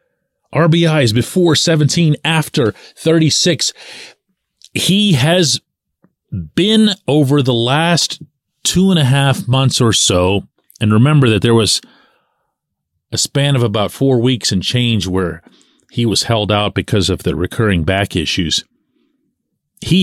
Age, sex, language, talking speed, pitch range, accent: 40-59, male, English, 130 wpm, 105-150 Hz, American